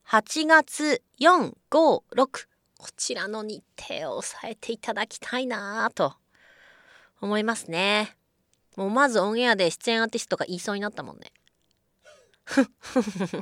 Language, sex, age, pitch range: Japanese, female, 30-49, 195-265 Hz